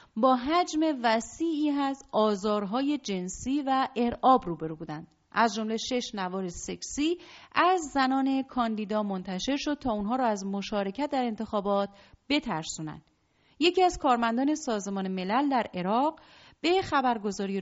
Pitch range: 200-290 Hz